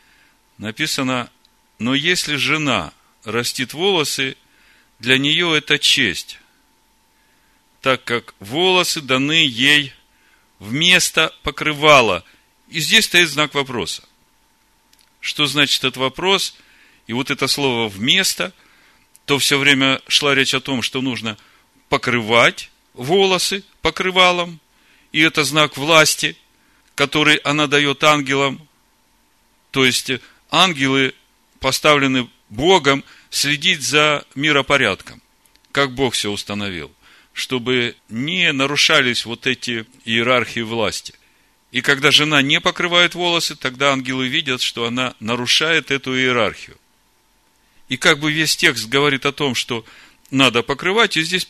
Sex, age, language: male, 40-59, Russian